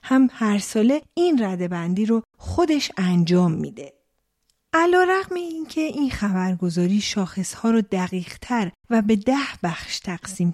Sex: female